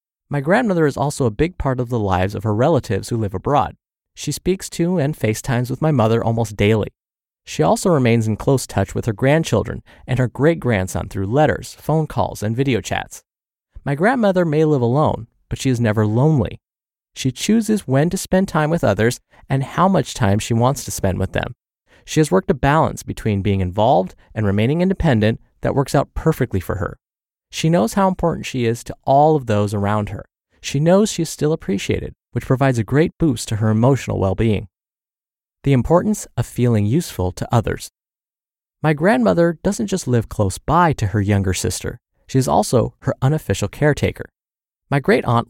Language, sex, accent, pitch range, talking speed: English, male, American, 110-155 Hz, 190 wpm